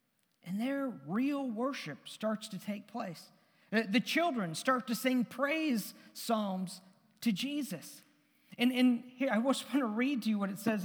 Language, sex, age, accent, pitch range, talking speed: English, male, 50-69, American, 185-260 Hz, 165 wpm